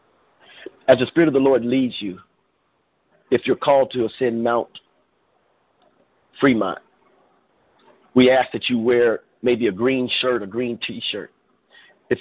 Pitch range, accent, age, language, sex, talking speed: 115-135 Hz, American, 50-69, English, male, 140 wpm